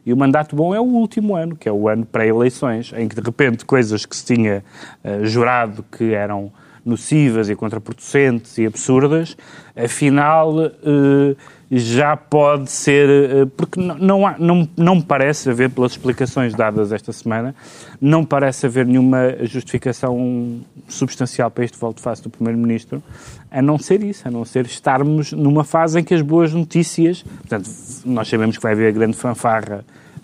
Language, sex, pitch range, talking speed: Portuguese, male, 120-155 Hz, 170 wpm